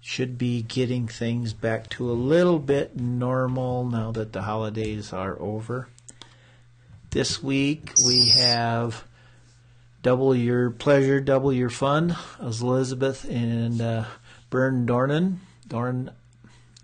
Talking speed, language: 120 wpm, English